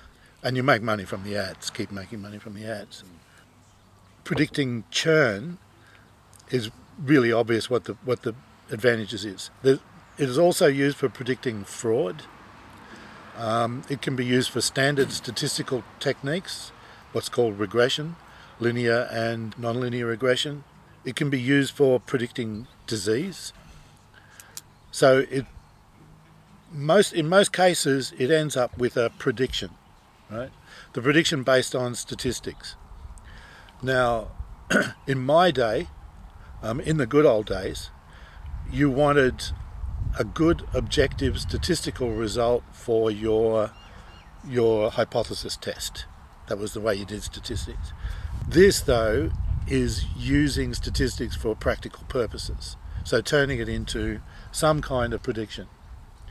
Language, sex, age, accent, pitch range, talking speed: English, male, 60-79, Australian, 105-135 Hz, 125 wpm